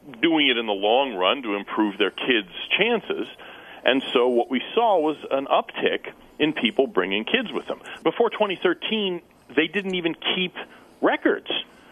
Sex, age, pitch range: male, 40-59, 130-185 Hz